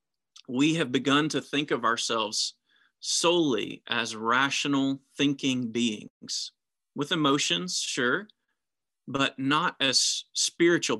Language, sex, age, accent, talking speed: English, male, 40-59, American, 105 wpm